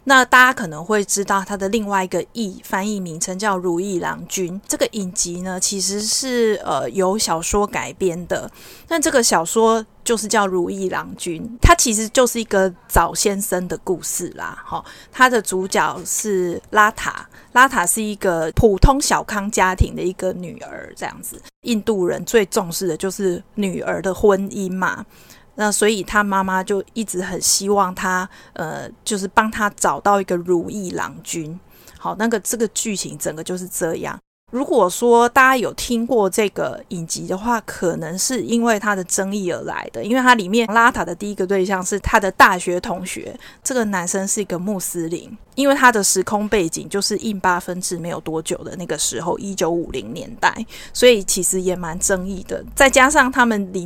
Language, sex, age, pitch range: Chinese, female, 30-49, 185-225 Hz